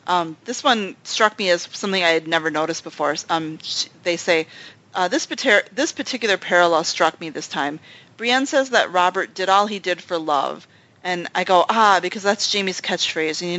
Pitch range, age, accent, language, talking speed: 165-205 Hz, 30-49, American, English, 195 wpm